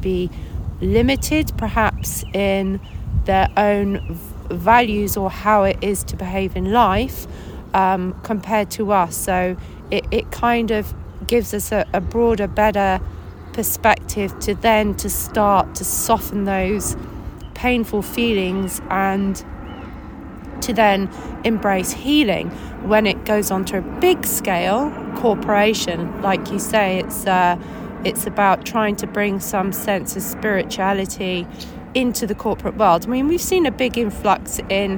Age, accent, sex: 30-49, British, female